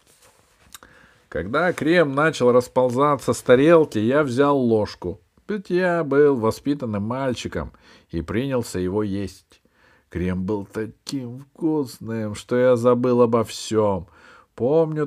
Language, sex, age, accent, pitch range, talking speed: Russian, male, 50-69, native, 90-120 Hz, 110 wpm